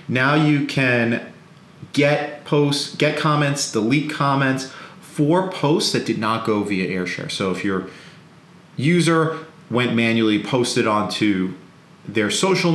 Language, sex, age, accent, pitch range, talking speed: English, male, 40-59, American, 105-155 Hz, 125 wpm